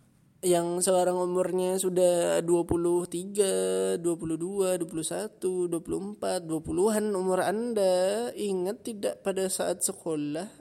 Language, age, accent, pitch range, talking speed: Indonesian, 20-39, native, 155-190 Hz, 90 wpm